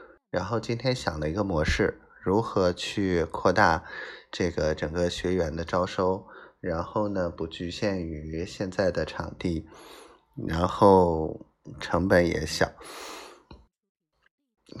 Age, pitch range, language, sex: 20-39, 85-120 Hz, Chinese, male